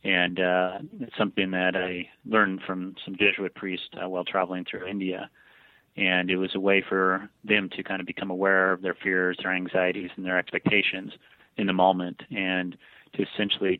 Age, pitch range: 30-49, 95-100 Hz